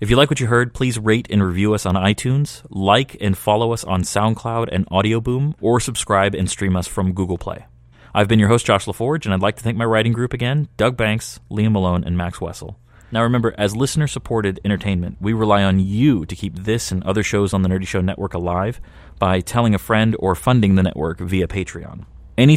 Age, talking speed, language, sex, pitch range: 30-49, 220 wpm, English, male, 95-115 Hz